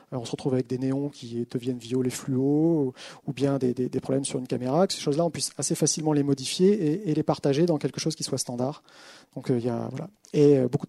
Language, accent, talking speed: French, French, 255 wpm